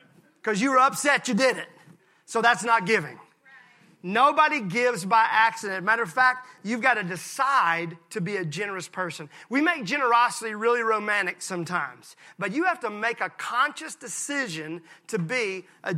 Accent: American